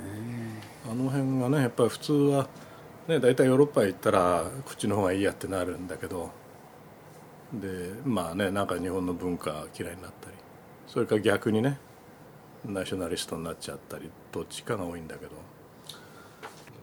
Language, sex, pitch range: Japanese, male, 95-135 Hz